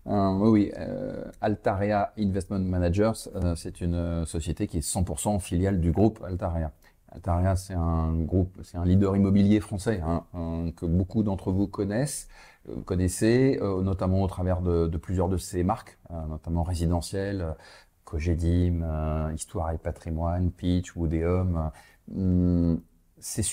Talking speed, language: 145 wpm, French